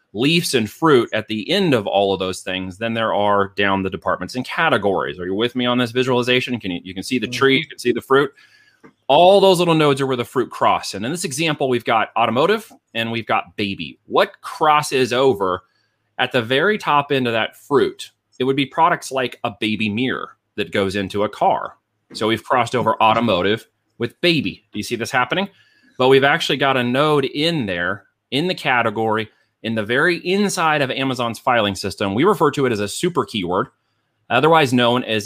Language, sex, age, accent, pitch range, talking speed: English, male, 30-49, American, 110-150 Hz, 210 wpm